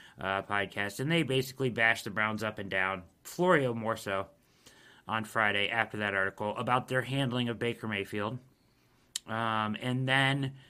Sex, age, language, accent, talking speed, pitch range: male, 40-59, English, American, 155 wpm, 115-180 Hz